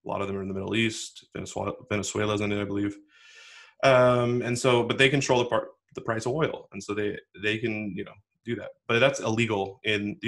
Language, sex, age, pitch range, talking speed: English, male, 20-39, 105-120 Hz, 240 wpm